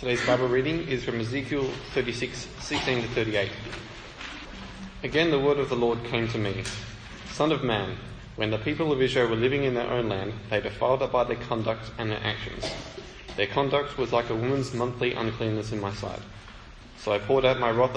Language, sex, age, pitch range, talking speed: English, male, 20-39, 105-125 Hz, 195 wpm